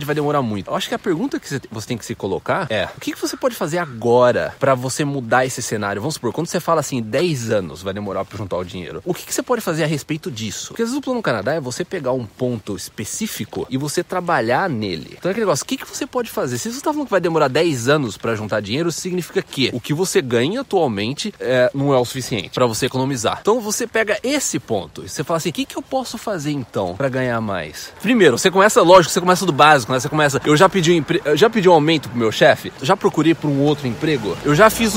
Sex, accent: male, Brazilian